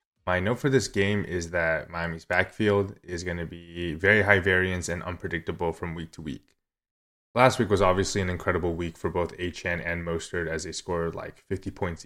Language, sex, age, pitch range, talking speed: English, male, 20-39, 85-100 Hz, 200 wpm